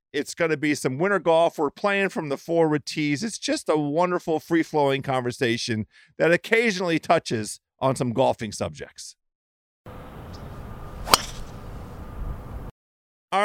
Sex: male